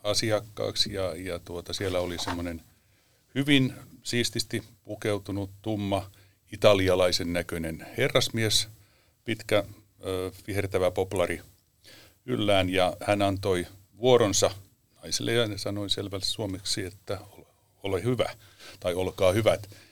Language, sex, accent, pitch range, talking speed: Finnish, male, native, 95-115 Hz, 100 wpm